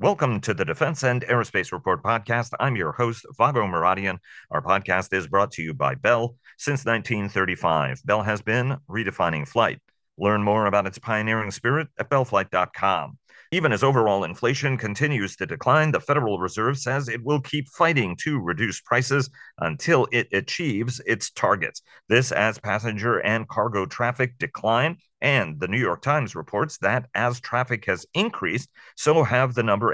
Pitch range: 100-130 Hz